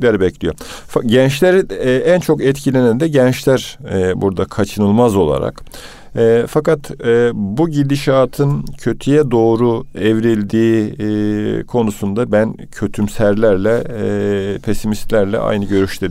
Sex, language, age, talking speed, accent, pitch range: male, Turkish, 50-69, 105 wpm, native, 100-130 Hz